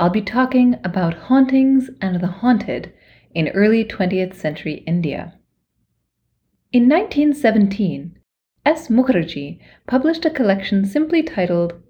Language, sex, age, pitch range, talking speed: English, female, 30-49, 165-240 Hz, 110 wpm